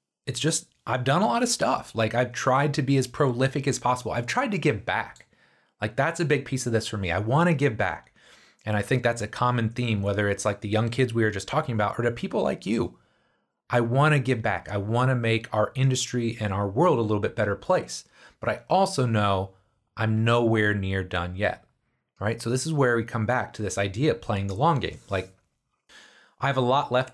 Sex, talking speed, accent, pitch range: male, 245 wpm, American, 105-135 Hz